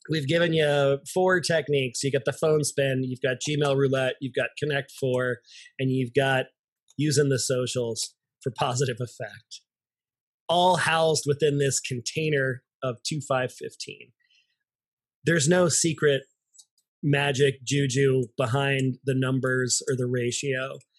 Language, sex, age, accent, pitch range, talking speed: English, male, 30-49, American, 130-155 Hz, 135 wpm